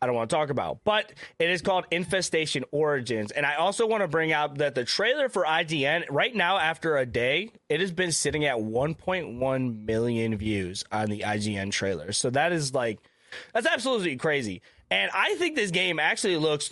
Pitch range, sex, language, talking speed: 135-185 Hz, male, English, 195 wpm